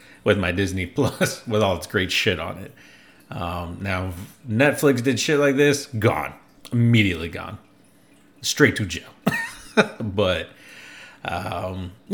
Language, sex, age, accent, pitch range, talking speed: English, male, 30-49, American, 95-125 Hz, 130 wpm